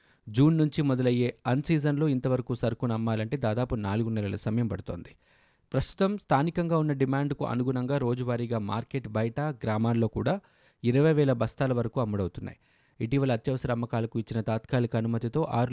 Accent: native